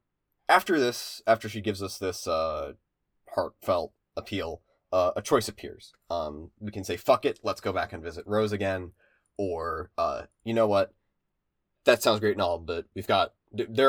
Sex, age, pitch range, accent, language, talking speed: male, 20-39, 95-120 Hz, American, English, 175 wpm